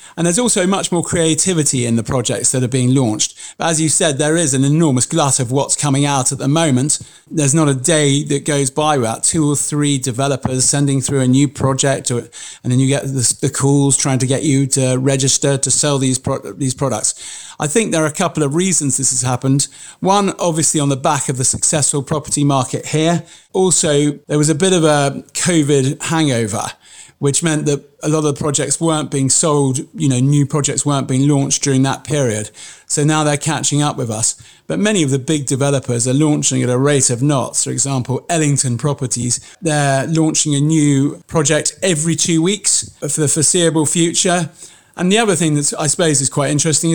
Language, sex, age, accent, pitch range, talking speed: English, male, 40-59, British, 135-160 Hz, 210 wpm